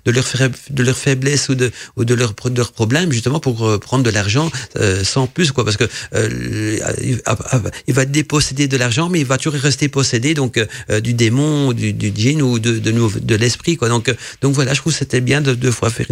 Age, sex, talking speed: 50-69, male, 230 wpm